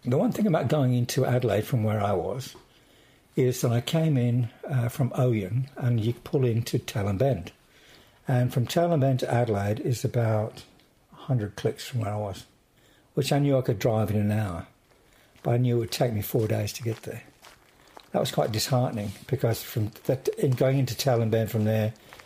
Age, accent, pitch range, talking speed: 60-79, British, 110-140 Hz, 200 wpm